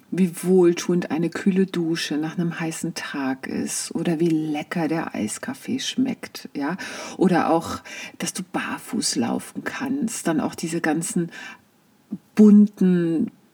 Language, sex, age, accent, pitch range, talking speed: German, female, 40-59, German, 170-245 Hz, 130 wpm